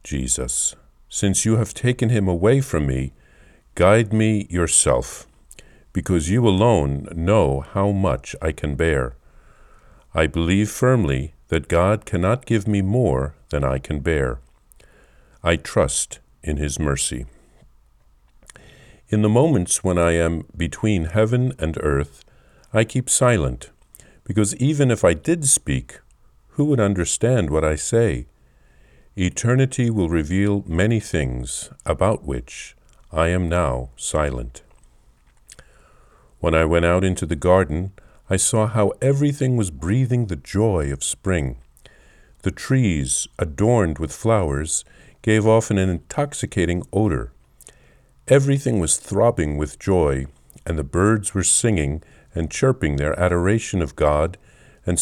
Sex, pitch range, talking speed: male, 75-110 Hz, 130 wpm